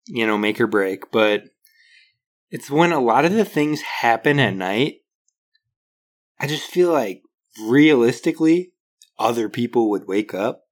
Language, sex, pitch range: English, male, 115-150 Hz